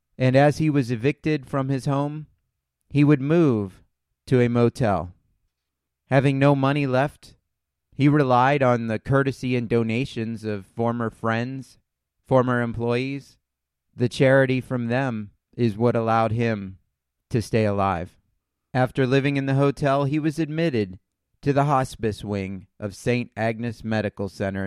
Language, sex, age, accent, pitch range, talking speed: English, male, 30-49, American, 100-135 Hz, 140 wpm